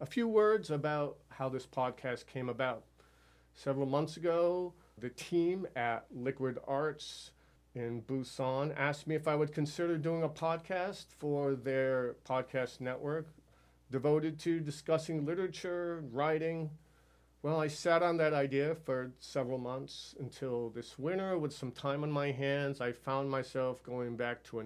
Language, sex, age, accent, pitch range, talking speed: English, male, 40-59, American, 125-155 Hz, 150 wpm